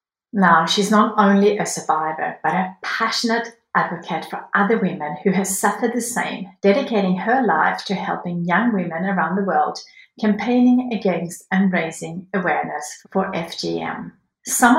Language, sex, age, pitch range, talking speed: English, female, 60-79, 180-225 Hz, 145 wpm